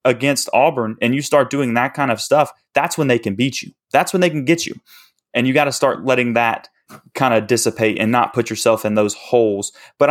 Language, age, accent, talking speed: English, 20-39, American, 235 wpm